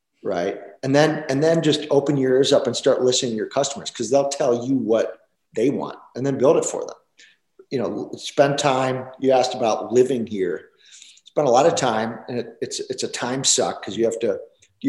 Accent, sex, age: American, male, 50-69